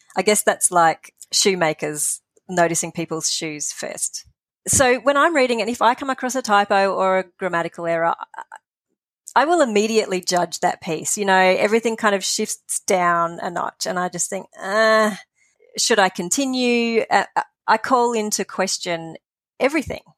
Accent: Australian